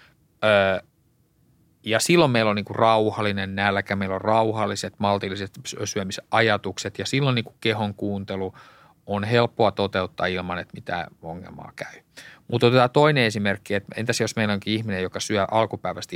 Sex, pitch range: male, 100-125 Hz